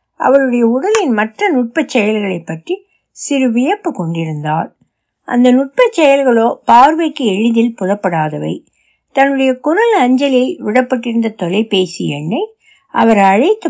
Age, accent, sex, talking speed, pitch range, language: 60-79, native, female, 65 wpm, 200-280 Hz, Tamil